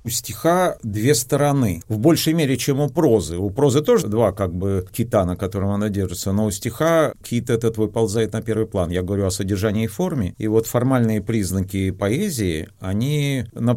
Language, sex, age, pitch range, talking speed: Russian, male, 40-59, 110-140 Hz, 185 wpm